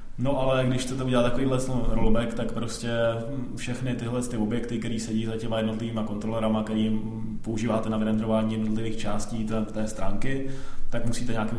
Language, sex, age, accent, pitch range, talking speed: Czech, male, 20-39, native, 110-115 Hz, 165 wpm